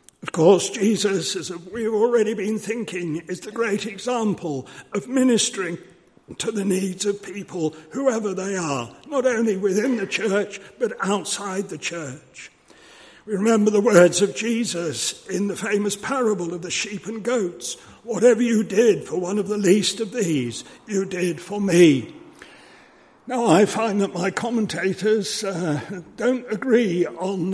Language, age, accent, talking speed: English, 60-79, British, 155 wpm